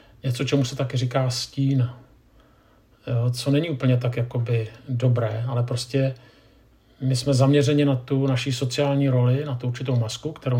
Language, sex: Czech, male